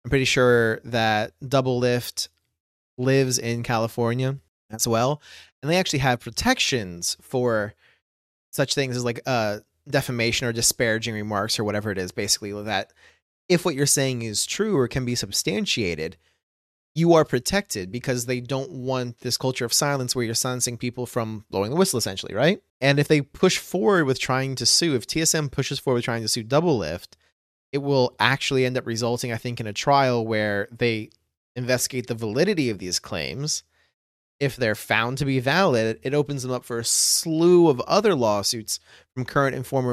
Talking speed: 180 wpm